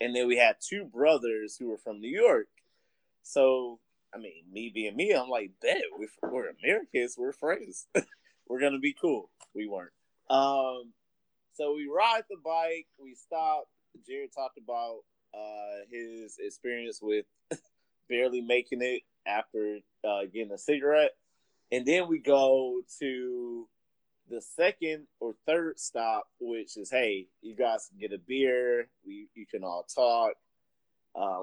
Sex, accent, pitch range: male, American, 115-185 Hz